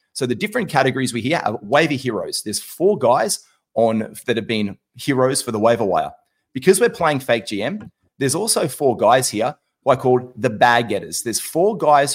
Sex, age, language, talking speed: male, 30-49, English, 195 wpm